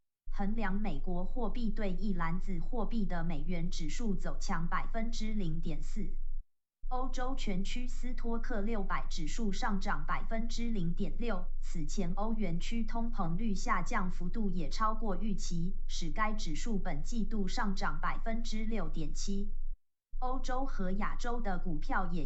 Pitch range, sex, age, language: 180-225 Hz, female, 20-39, Chinese